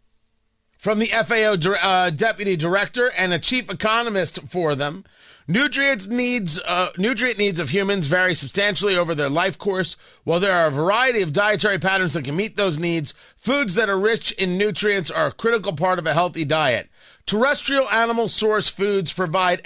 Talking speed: 170 wpm